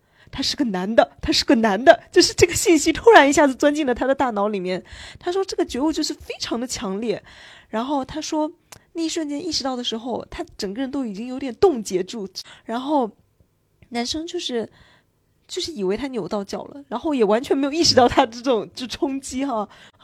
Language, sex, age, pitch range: Chinese, female, 20-39, 210-275 Hz